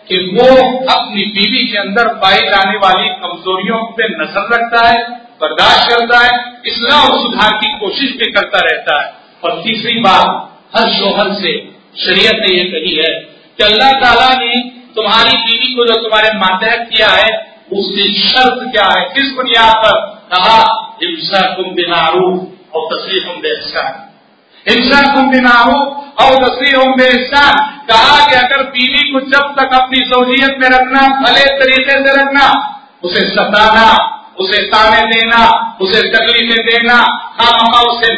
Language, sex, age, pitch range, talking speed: Hindi, male, 40-59, 220-265 Hz, 150 wpm